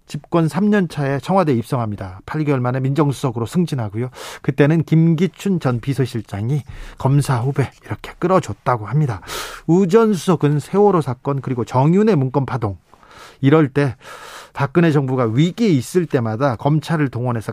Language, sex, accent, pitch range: Korean, male, native, 130-175 Hz